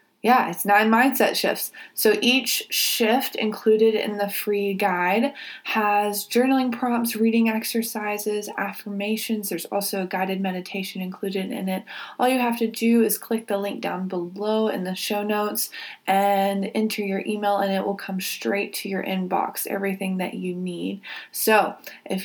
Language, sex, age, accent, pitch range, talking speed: English, female, 20-39, American, 200-240 Hz, 160 wpm